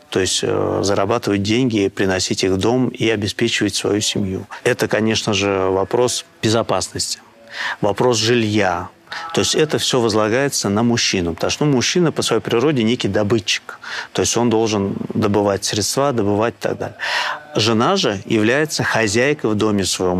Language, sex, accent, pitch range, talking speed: Russian, male, native, 100-115 Hz, 155 wpm